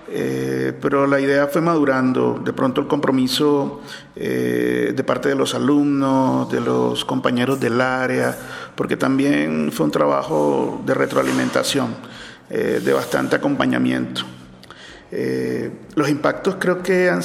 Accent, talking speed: Venezuelan, 130 wpm